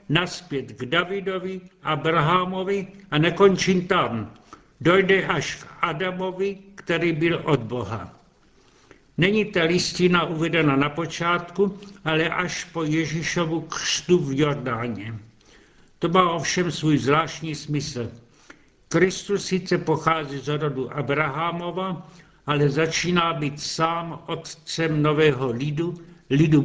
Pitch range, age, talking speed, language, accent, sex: 145-175 Hz, 70-89, 110 wpm, Czech, native, male